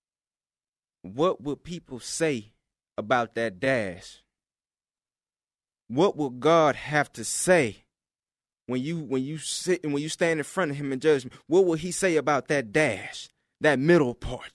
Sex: male